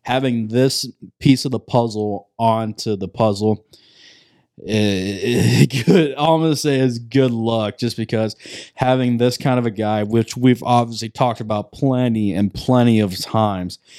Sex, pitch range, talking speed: male, 110-130 Hz, 160 wpm